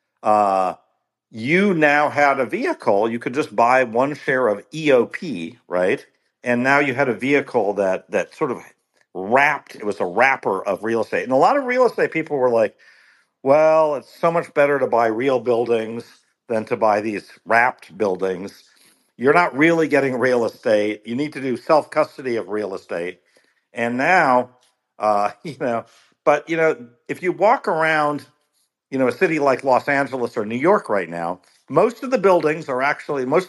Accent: American